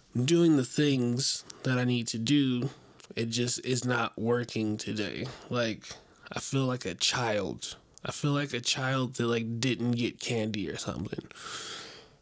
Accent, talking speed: American, 155 wpm